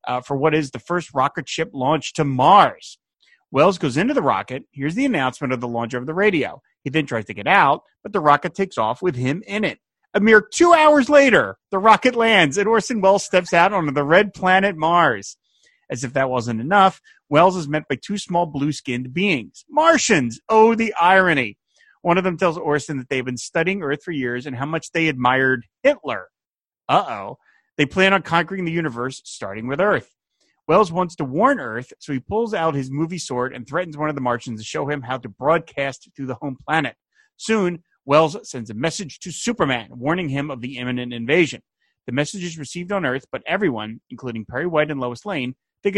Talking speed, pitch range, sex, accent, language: 210 wpm, 130-195 Hz, male, American, English